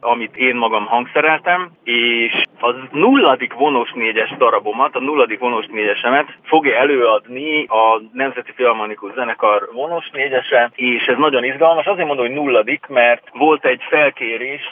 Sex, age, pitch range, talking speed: male, 30-49, 120-155 Hz, 140 wpm